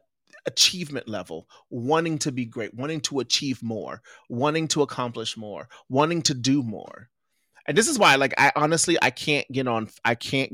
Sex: male